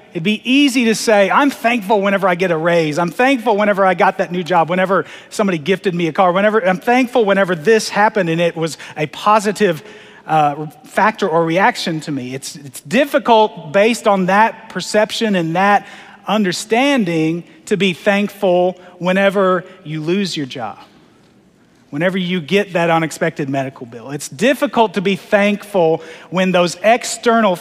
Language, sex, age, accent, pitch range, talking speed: English, male, 40-59, American, 170-225 Hz, 165 wpm